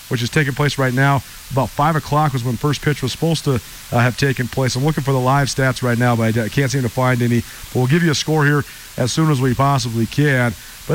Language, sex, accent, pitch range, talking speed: English, male, American, 130-165 Hz, 270 wpm